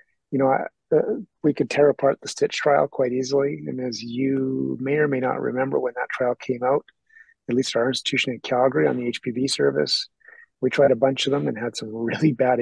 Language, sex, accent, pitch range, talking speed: English, male, American, 125-155 Hz, 220 wpm